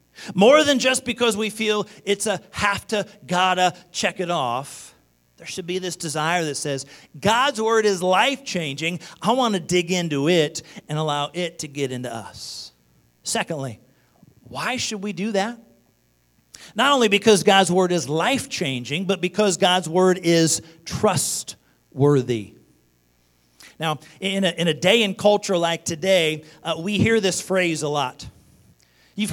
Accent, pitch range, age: American, 155-240 Hz, 40-59